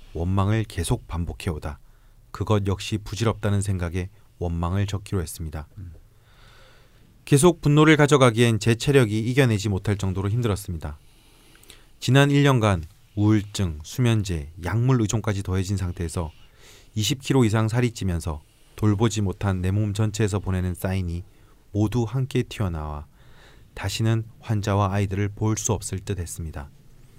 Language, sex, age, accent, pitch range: Korean, male, 30-49, native, 95-120 Hz